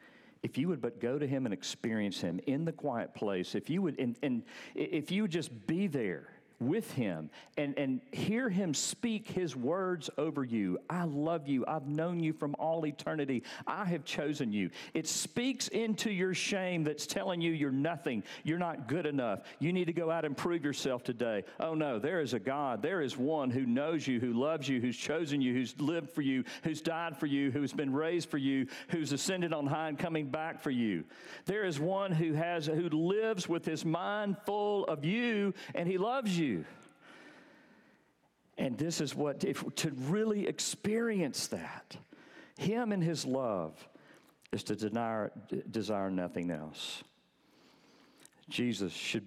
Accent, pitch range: American, 120-175 Hz